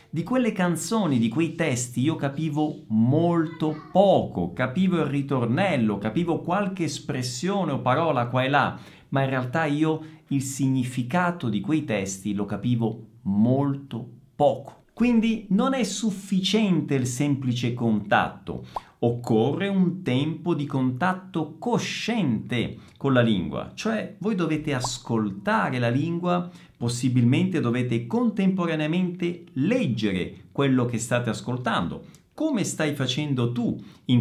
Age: 50-69